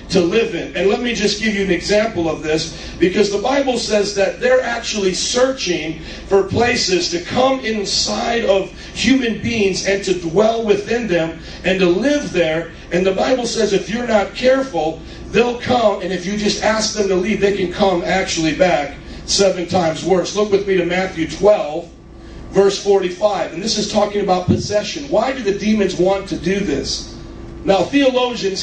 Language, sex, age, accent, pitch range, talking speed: English, male, 40-59, American, 175-210 Hz, 185 wpm